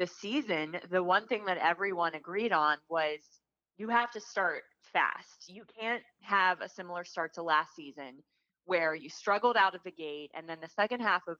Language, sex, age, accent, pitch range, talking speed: English, female, 30-49, American, 155-190 Hz, 195 wpm